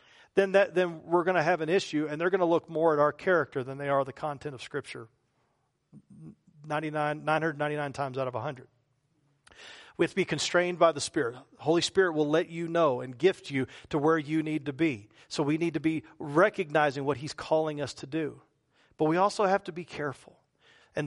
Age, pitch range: 40-59, 145-200 Hz